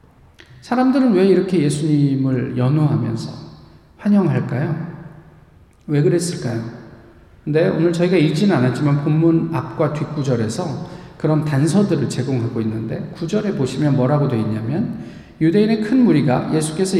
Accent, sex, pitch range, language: native, male, 150-200 Hz, Korean